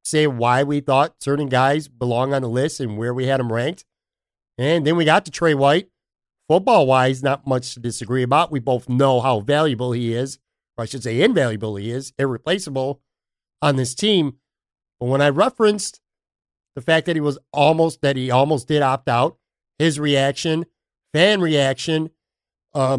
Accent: American